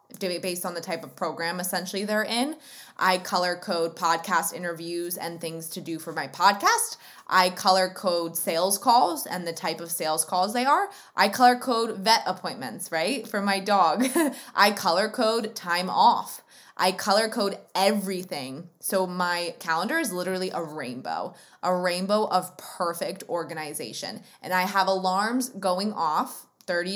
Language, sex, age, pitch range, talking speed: English, female, 20-39, 175-210 Hz, 160 wpm